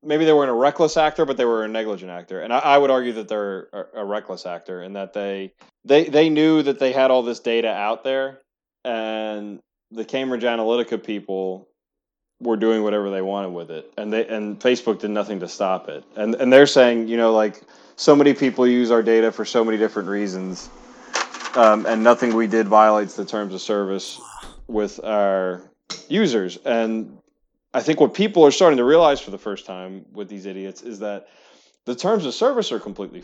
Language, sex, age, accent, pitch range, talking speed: English, male, 20-39, American, 100-125 Hz, 200 wpm